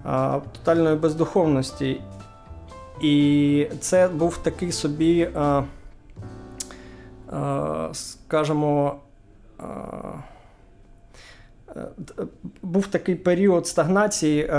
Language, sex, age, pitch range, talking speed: Ukrainian, male, 20-39, 140-160 Hz, 50 wpm